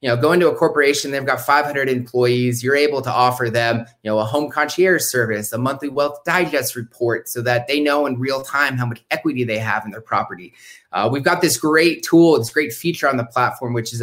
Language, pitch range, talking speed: English, 120-145 Hz, 235 wpm